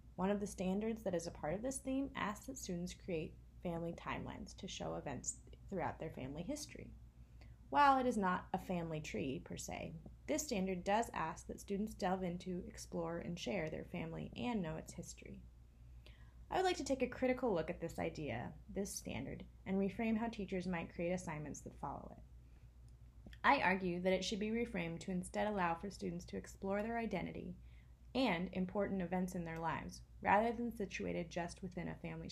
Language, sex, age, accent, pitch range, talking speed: English, female, 20-39, American, 160-205 Hz, 190 wpm